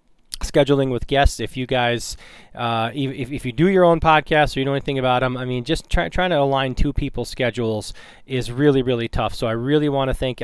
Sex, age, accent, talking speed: male, 20-39, American, 215 wpm